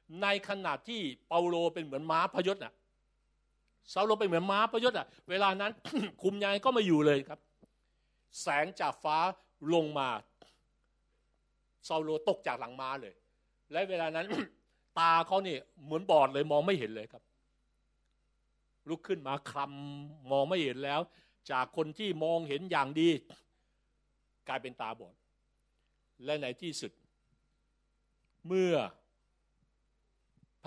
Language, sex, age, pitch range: Thai, male, 60-79, 135-185 Hz